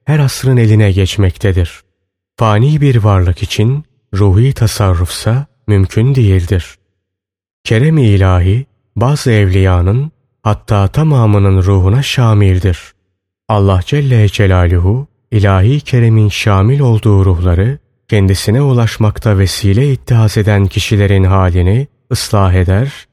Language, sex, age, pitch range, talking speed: Turkish, male, 30-49, 95-120 Hz, 95 wpm